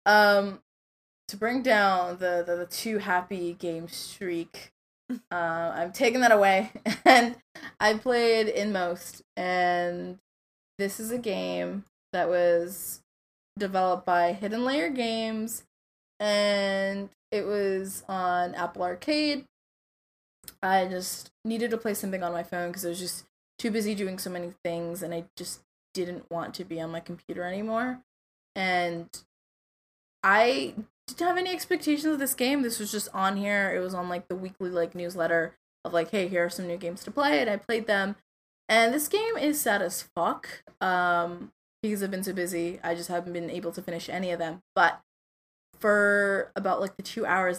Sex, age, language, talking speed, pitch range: female, 20-39, English, 170 wpm, 175-220 Hz